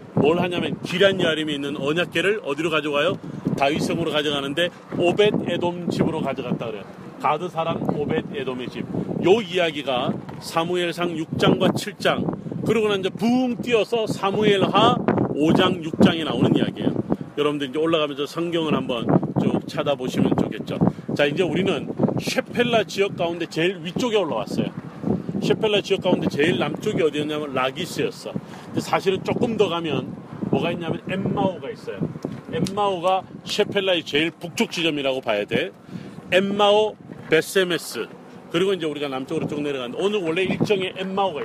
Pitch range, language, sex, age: 160-200 Hz, Korean, male, 40-59